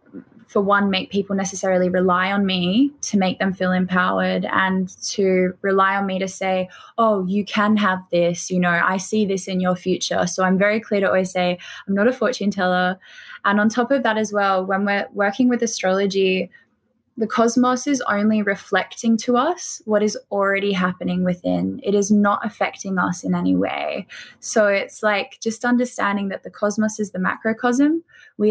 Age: 10-29